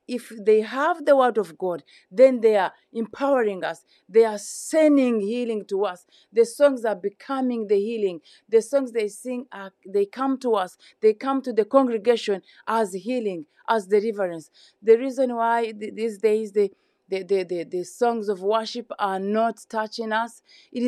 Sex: female